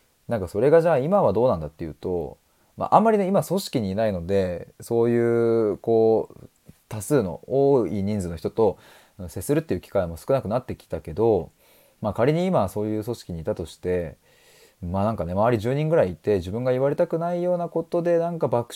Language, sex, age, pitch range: Japanese, male, 20-39, 90-150 Hz